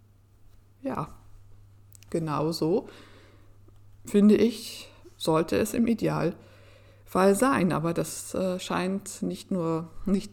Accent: German